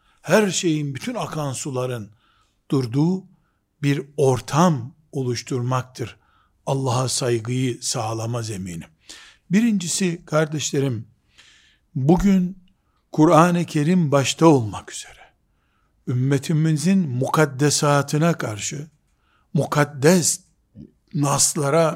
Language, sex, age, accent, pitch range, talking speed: Turkish, male, 60-79, native, 130-165 Hz, 70 wpm